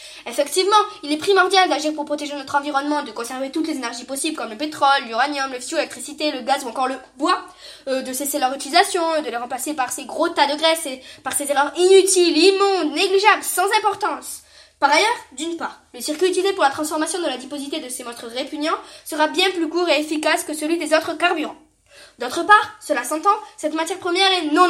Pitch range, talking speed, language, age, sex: 275-355 Hz, 215 wpm, French, 20-39, female